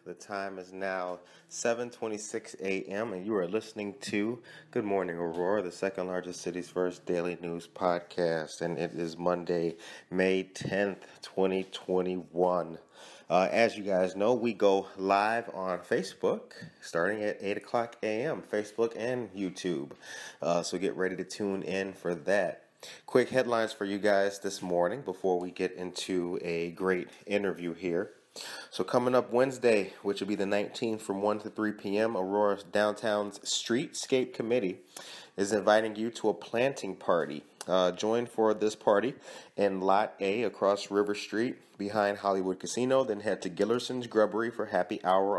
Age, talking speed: 30-49, 155 wpm